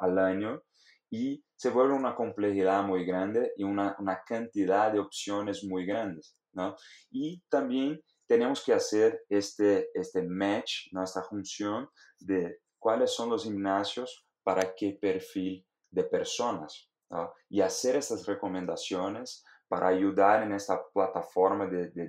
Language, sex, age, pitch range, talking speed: Spanish, male, 30-49, 95-130 Hz, 140 wpm